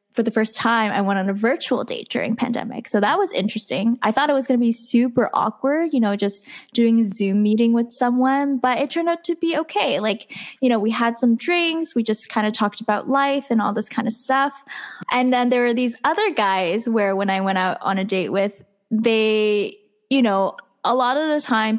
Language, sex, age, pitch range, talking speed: English, female, 10-29, 210-255 Hz, 235 wpm